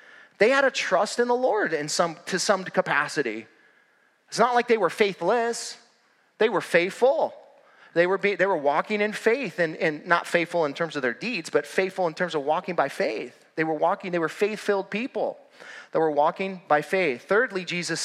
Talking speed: 200 wpm